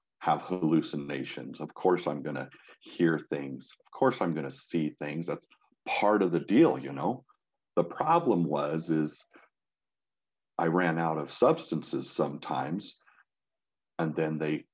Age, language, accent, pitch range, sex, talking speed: 50-69, English, American, 80-90 Hz, male, 140 wpm